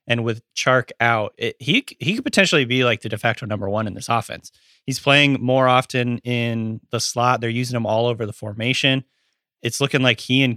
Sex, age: male, 30-49